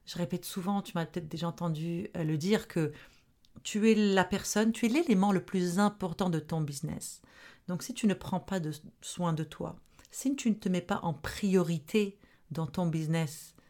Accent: French